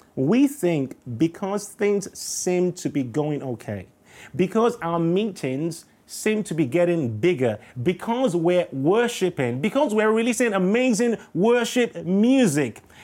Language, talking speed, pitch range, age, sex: English, 120 wpm, 160-225 Hz, 30-49, male